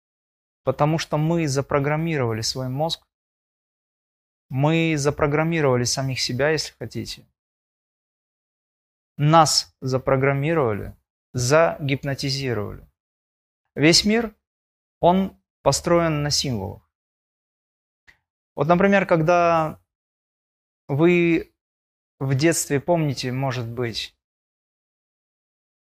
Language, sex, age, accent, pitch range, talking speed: Russian, male, 20-39, native, 115-155 Hz, 70 wpm